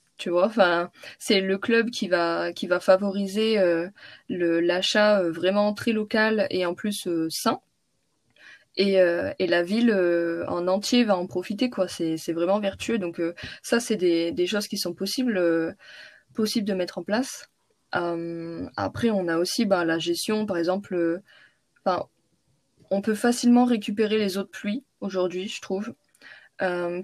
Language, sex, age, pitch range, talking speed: French, female, 20-39, 175-215 Hz, 170 wpm